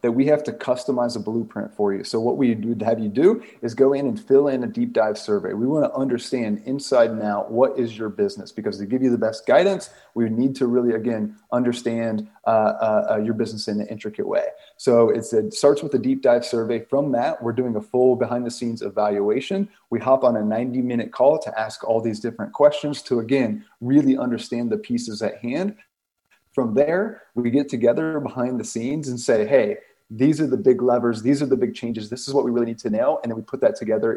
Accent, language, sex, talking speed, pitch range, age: American, English, male, 225 wpm, 115-140 Hz, 30-49